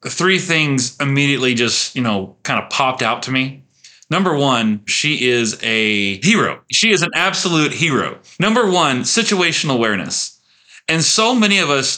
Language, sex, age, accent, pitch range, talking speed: English, male, 30-49, American, 115-150 Hz, 160 wpm